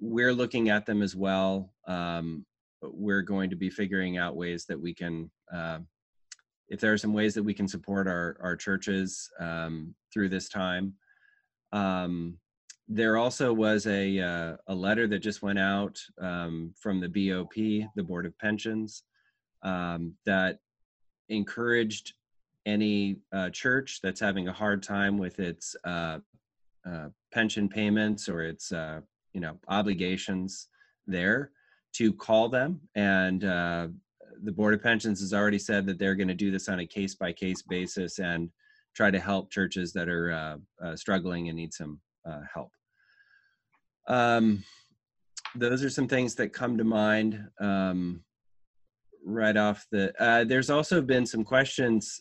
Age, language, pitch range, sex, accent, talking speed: 30-49, English, 90-110 Hz, male, American, 155 wpm